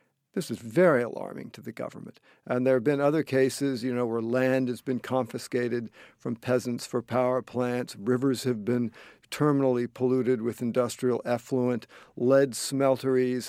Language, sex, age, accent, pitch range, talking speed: English, male, 50-69, American, 120-135 Hz, 155 wpm